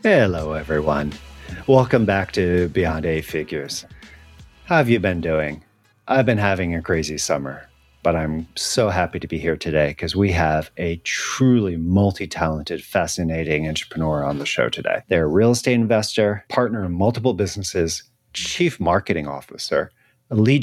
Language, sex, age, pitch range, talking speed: English, male, 40-59, 80-115 Hz, 150 wpm